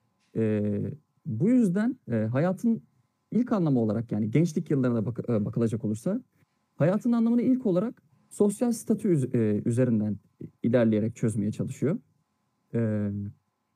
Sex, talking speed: male, 120 wpm